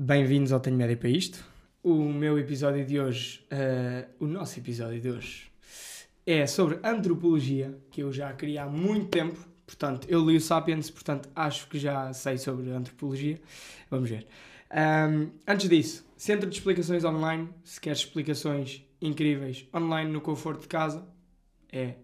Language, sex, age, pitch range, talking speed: Portuguese, male, 20-39, 135-165 Hz, 150 wpm